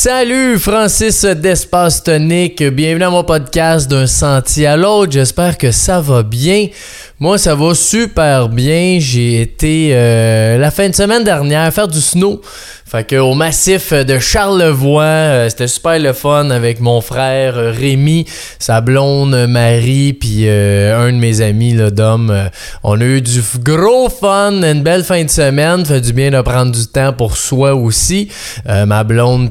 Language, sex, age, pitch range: French, male, 20-39, 120-165 Hz